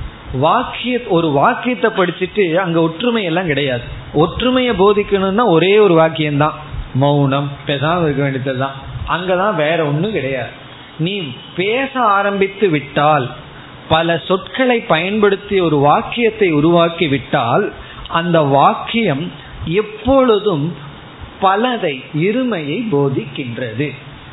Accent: native